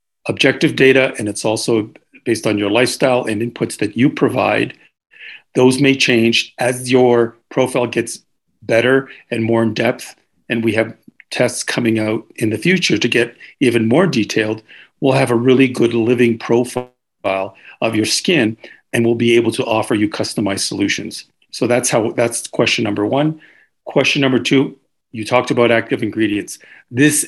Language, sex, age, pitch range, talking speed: English, male, 50-69, 110-130 Hz, 165 wpm